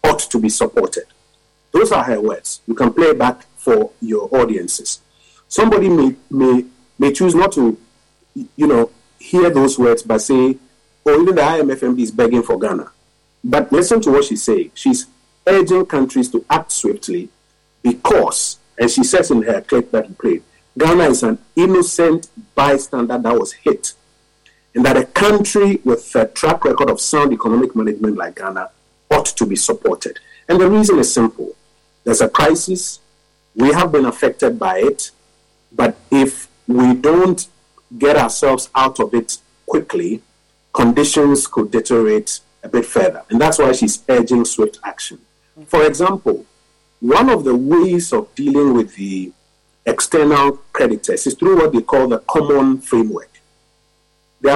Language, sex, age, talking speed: English, male, 50-69, 155 wpm